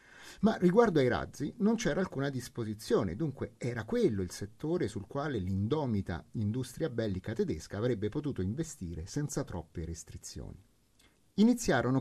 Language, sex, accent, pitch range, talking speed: Italian, male, native, 110-165 Hz, 130 wpm